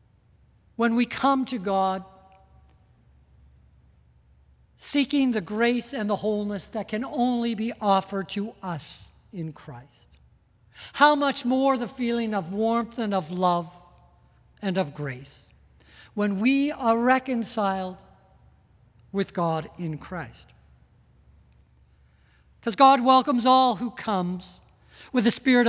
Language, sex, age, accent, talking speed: English, male, 60-79, American, 115 wpm